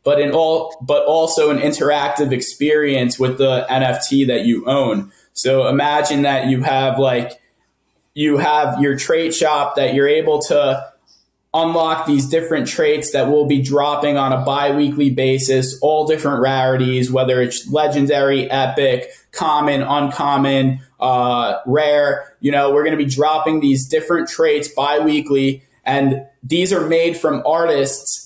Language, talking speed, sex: English, 145 wpm, male